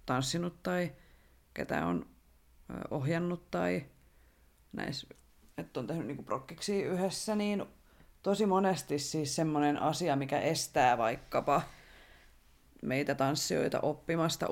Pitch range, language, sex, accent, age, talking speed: 135-185 Hz, Finnish, female, native, 30-49, 105 wpm